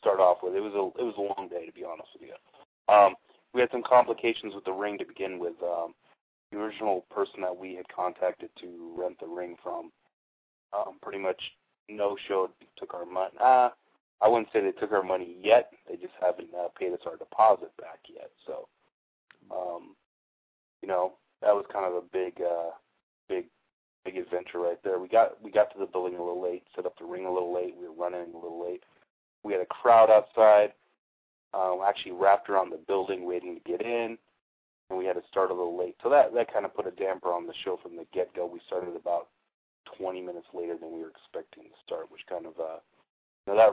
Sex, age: male, 30-49